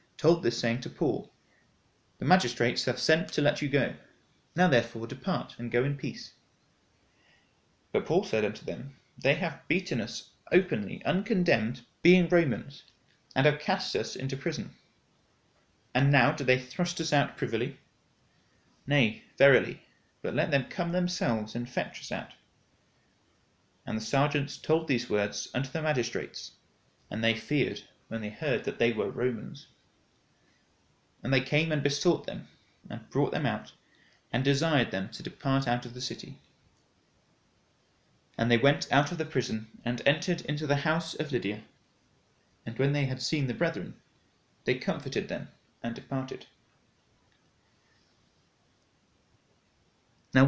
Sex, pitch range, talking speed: male, 120-160 Hz, 145 wpm